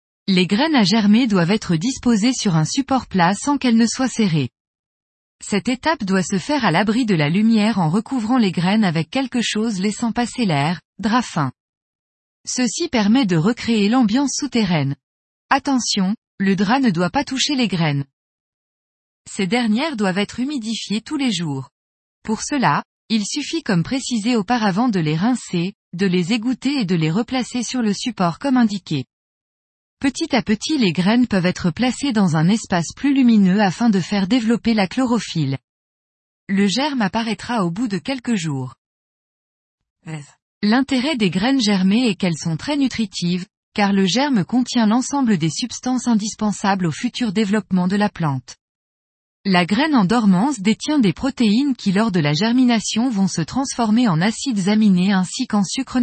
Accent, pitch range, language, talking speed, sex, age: French, 180-245 Hz, French, 165 wpm, female, 20-39